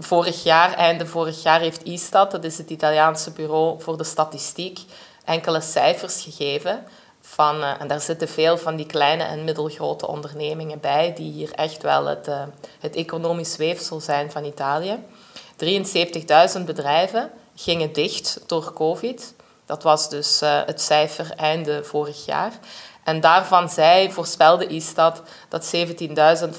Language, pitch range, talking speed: Dutch, 150-175 Hz, 140 wpm